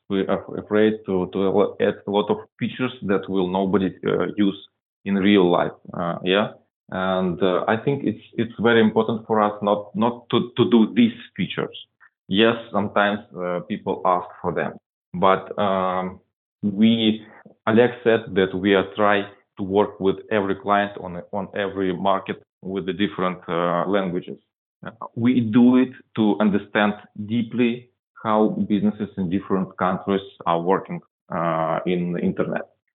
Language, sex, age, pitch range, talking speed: English, male, 20-39, 95-115 Hz, 155 wpm